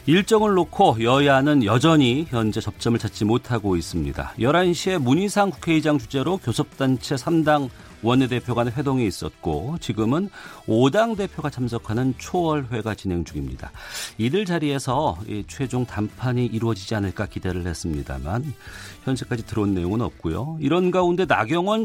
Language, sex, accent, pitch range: Korean, male, native, 105-155 Hz